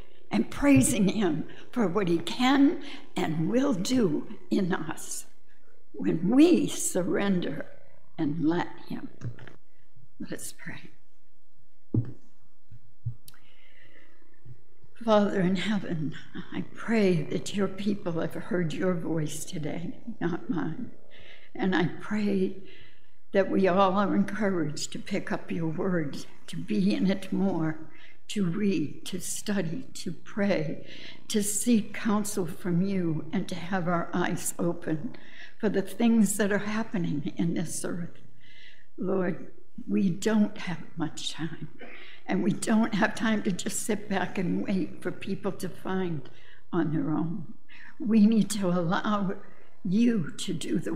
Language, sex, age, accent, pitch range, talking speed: English, female, 60-79, American, 165-210 Hz, 130 wpm